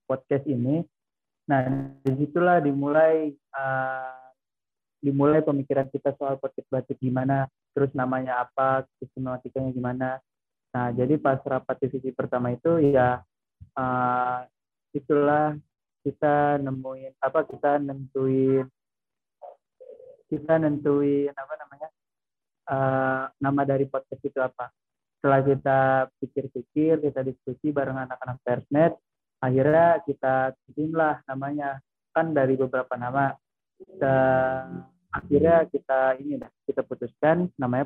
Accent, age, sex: native, 30-49, male